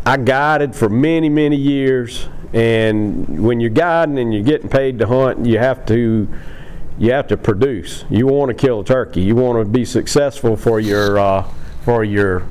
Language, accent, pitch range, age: English, American, 105-130 Hz, 40-59